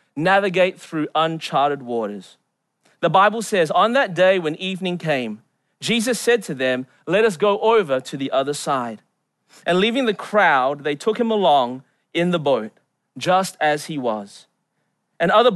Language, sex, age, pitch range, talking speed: English, male, 30-49, 150-205 Hz, 160 wpm